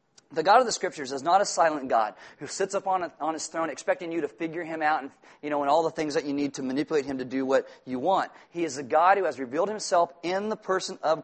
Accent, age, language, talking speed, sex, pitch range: American, 40-59, English, 280 wpm, male, 160-205 Hz